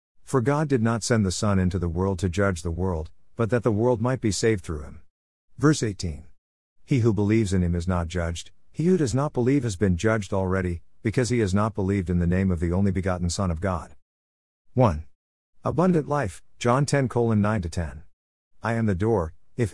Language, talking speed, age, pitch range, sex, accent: English, 205 wpm, 50-69, 85-120 Hz, male, American